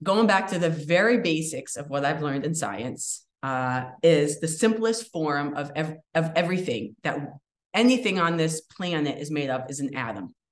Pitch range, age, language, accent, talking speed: 145-180 Hz, 30-49, English, American, 185 wpm